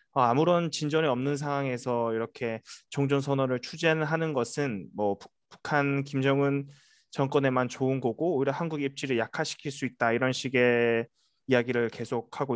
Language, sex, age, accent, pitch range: Korean, male, 20-39, native, 125-155 Hz